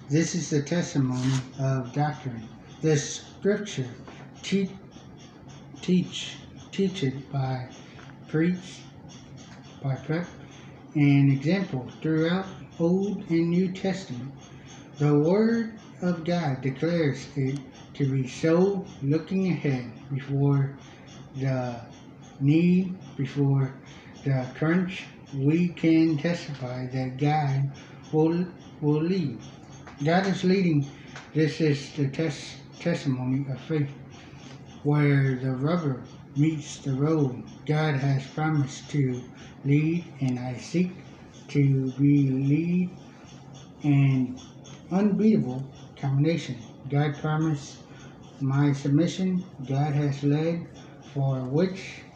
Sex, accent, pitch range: male, American, 135-160 Hz